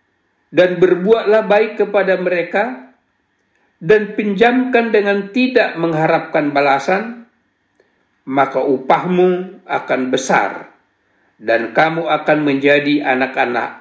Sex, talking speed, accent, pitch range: male, 85 wpm, native, 155-205 Hz